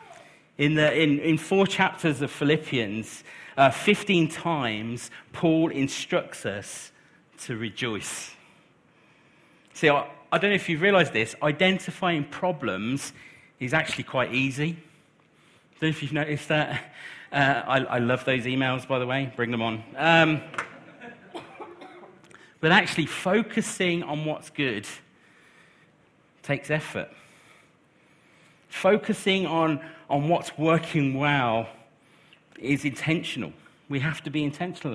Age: 40-59